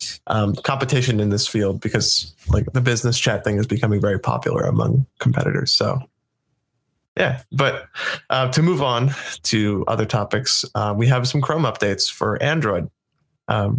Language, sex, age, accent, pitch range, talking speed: English, male, 20-39, American, 110-130 Hz, 155 wpm